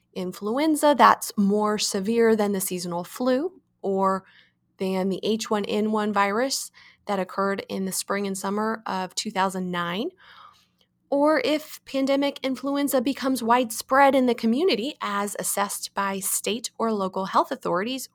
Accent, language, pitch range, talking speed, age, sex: American, English, 175-250 Hz, 130 wpm, 20-39, female